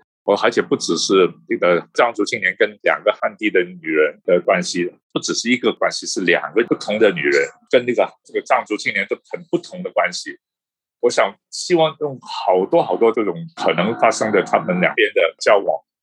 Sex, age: male, 50-69